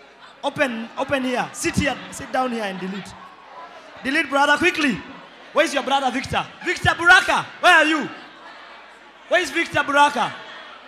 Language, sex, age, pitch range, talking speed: English, male, 30-49, 260-340 Hz, 145 wpm